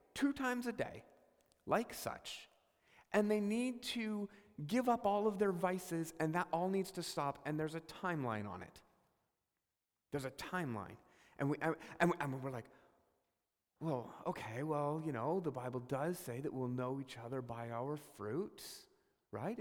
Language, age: English, 40-59